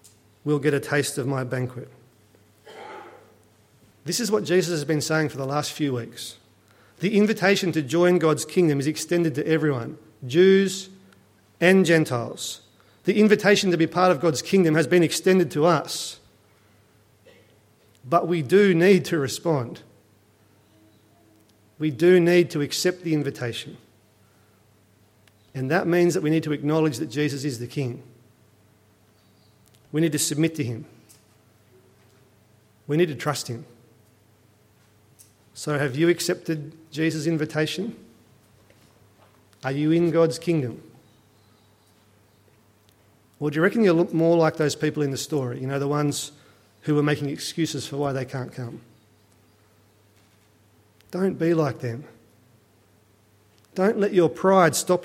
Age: 40-59